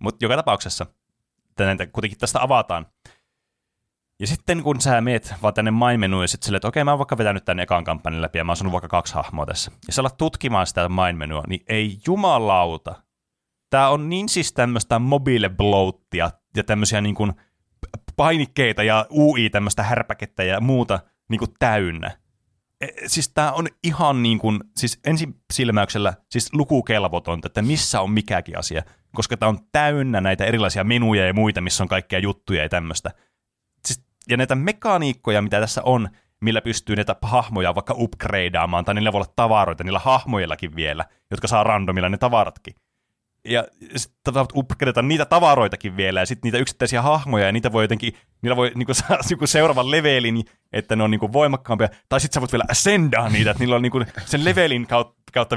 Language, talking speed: Finnish, 175 wpm